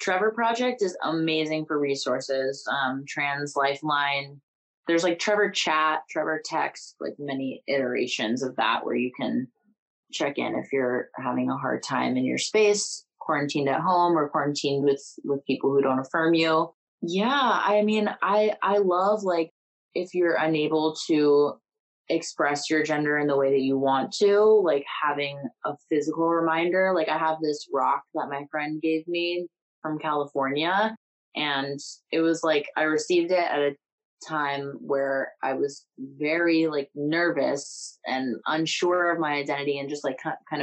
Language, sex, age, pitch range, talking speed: English, female, 20-39, 140-170 Hz, 160 wpm